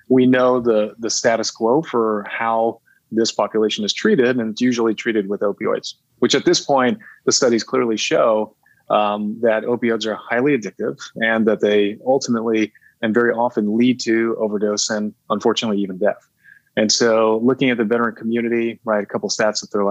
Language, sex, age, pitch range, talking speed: English, male, 30-49, 105-125 Hz, 180 wpm